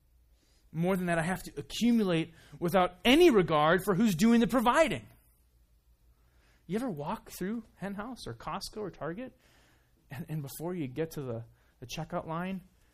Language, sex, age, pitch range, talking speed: English, male, 30-49, 115-170 Hz, 160 wpm